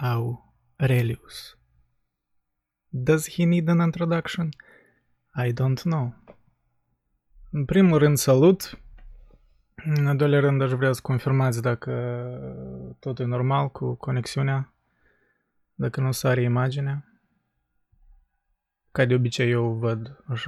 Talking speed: 110 wpm